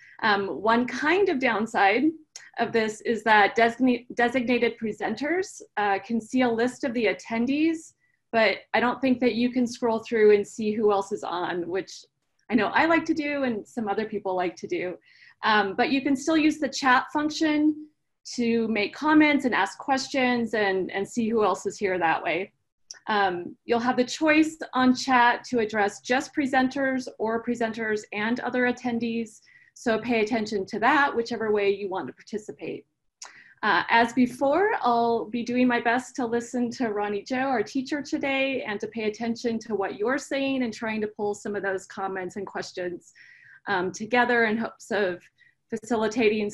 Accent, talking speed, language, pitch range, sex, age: American, 180 wpm, English, 205-260 Hz, female, 30-49